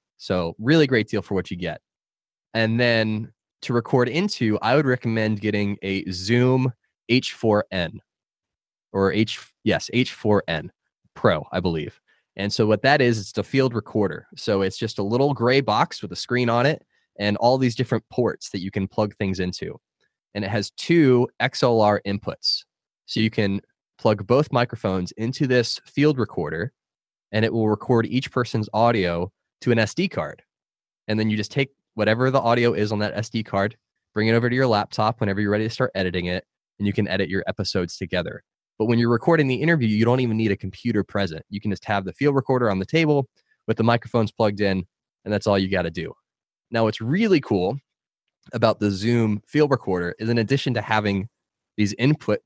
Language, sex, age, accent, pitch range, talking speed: English, male, 20-39, American, 100-125 Hz, 195 wpm